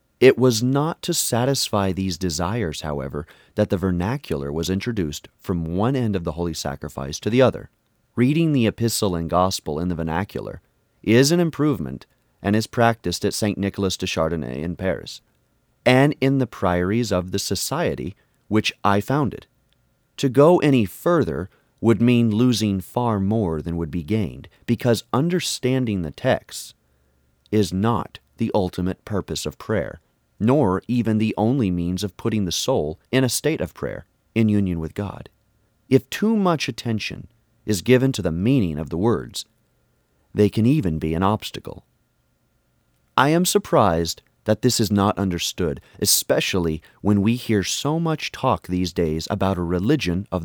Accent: American